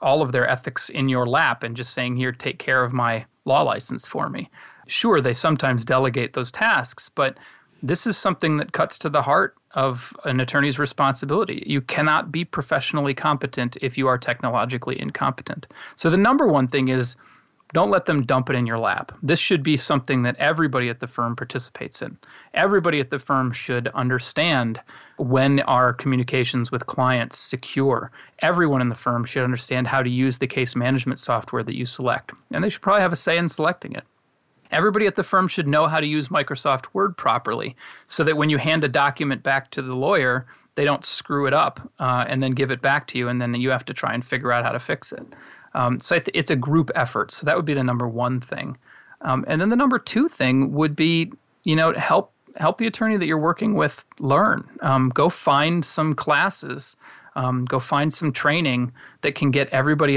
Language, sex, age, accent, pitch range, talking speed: English, male, 30-49, American, 125-150 Hz, 205 wpm